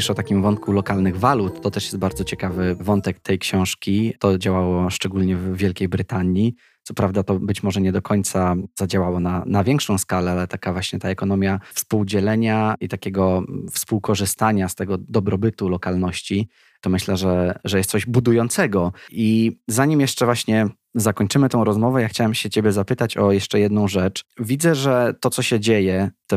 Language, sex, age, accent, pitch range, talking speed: Polish, male, 20-39, native, 100-120 Hz, 170 wpm